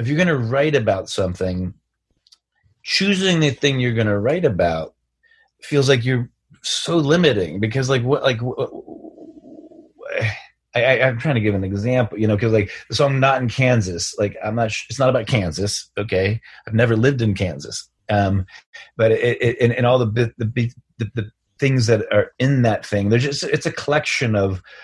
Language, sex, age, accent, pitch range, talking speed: English, male, 30-49, American, 105-140 Hz, 190 wpm